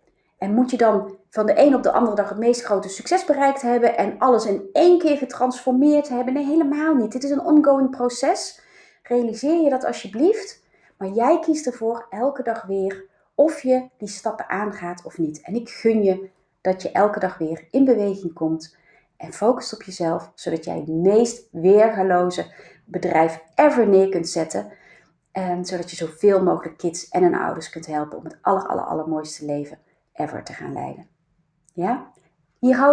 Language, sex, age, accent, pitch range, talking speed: Dutch, female, 30-49, Dutch, 185-270 Hz, 180 wpm